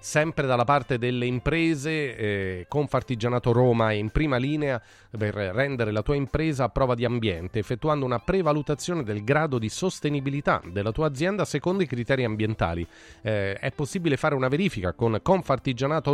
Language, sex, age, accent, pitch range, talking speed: Italian, male, 30-49, native, 115-155 Hz, 160 wpm